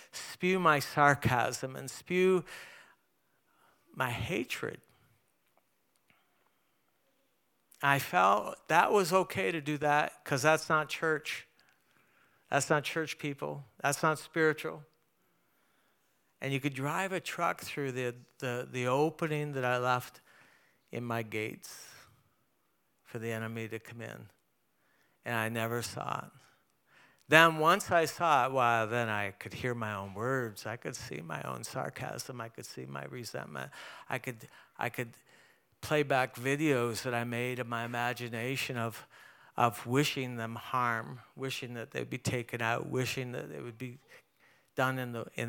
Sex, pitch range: male, 115-145 Hz